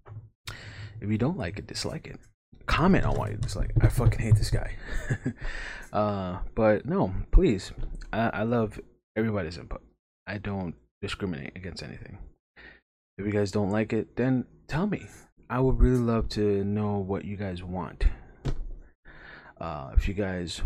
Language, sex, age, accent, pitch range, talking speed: English, male, 20-39, American, 90-110 Hz, 160 wpm